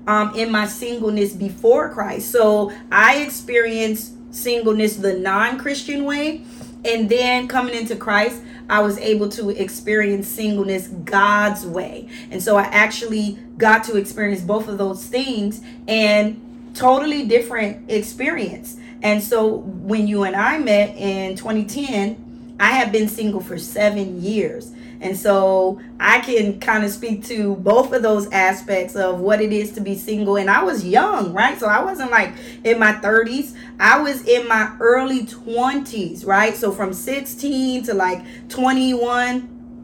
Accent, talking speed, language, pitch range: American, 150 wpm, English, 205-240 Hz